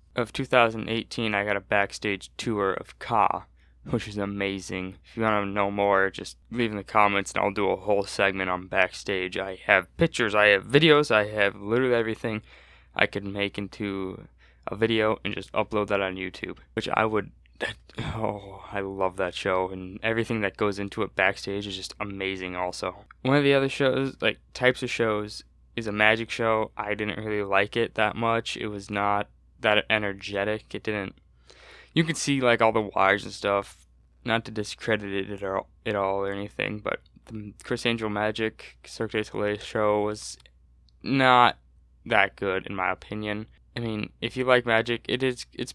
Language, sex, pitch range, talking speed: English, male, 95-115 Hz, 190 wpm